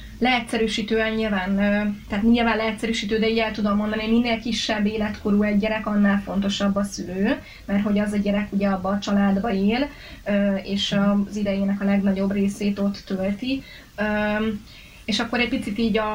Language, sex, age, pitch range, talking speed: Hungarian, female, 20-39, 205-230 Hz, 160 wpm